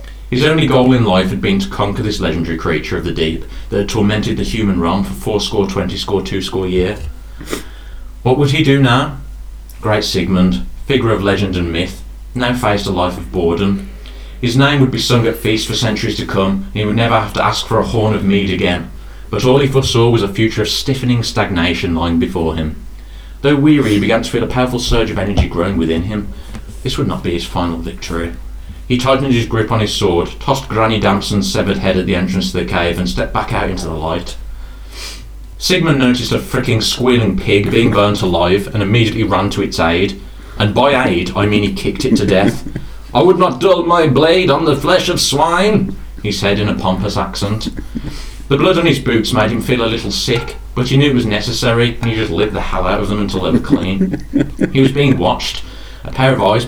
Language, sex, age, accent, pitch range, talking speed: English, male, 30-49, British, 90-120 Hz, 220 wpm